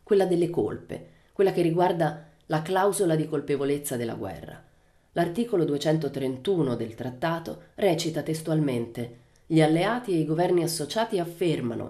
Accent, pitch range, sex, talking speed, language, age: native, 125-175 Hz, female, 125 wpm, Italian, 30-49